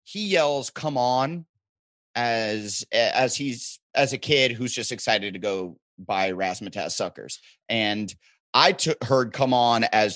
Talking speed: 150 wpm